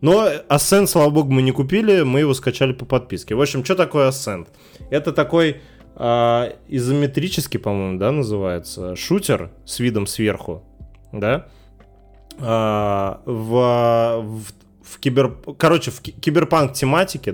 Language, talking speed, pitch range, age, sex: Russian, 130 wpm, 110-145 Hz, 20-39, male